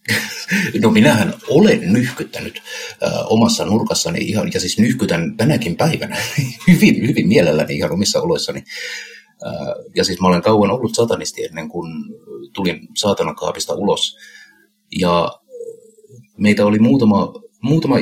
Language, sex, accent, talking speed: Finnish, male, native, 125 wpm